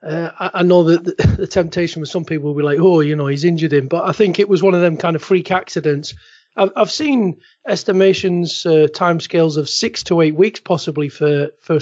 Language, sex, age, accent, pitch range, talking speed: English, male, 40-59, British, 165-195 Hz, 235 wpm